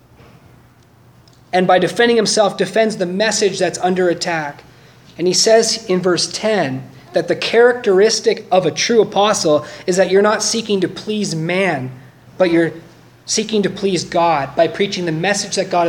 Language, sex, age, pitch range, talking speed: English, male, 20-39, 160-210 Hz, 160 wpm